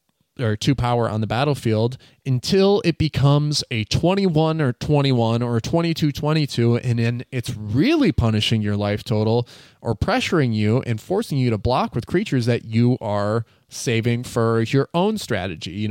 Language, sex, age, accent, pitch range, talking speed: English, male, 20-39, American, 110-140 Hz, 160 wpm